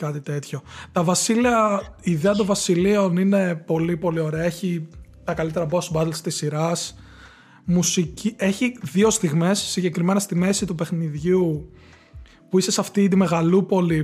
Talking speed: 135 wpm